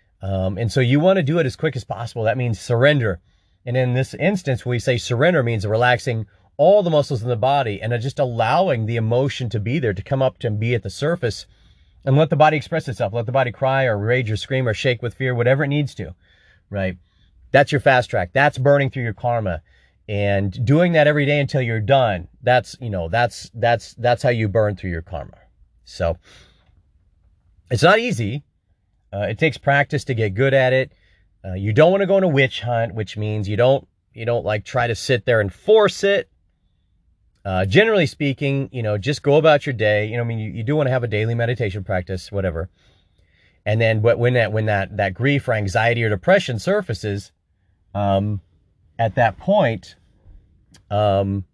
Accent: American